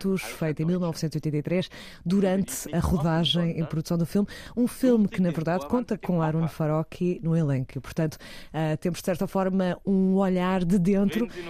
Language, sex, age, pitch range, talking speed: Portuguese, female, 20-39, 160-190 Hz, 155 wpm